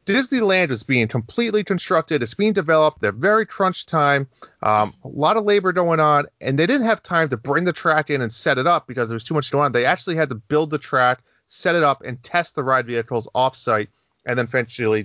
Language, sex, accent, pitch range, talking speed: English, male, American, 110-150 Hz, 235 wpm